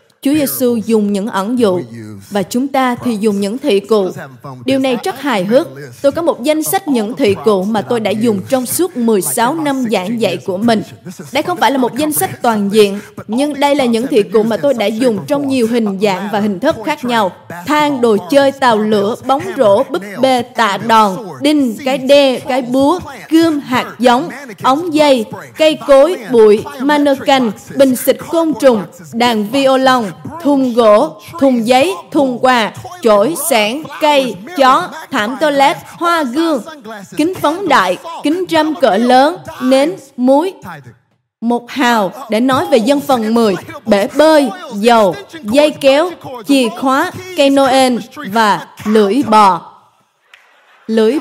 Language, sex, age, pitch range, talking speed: Vietnamese, female, 20-39, 215-285 Hz, 165 wpm